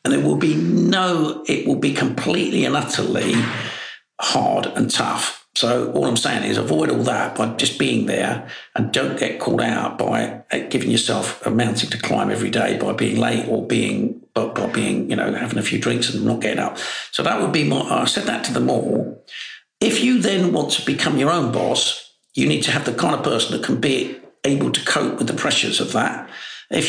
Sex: male